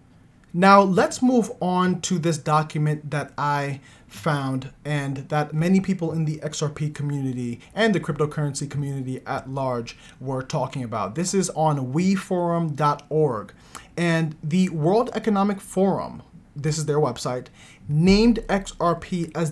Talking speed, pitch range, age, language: 130 wpm, 150-195 Hz, 30-49, English